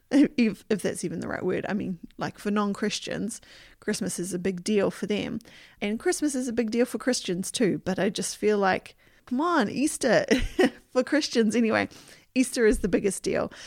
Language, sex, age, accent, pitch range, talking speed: English, female, 30-49, Australian, 190-245 Hz, 195 wpm